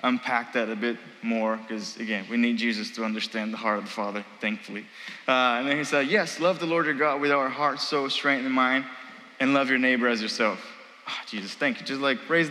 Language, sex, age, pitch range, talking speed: English, male, 20-39, 120-165 Hz, 240 wpm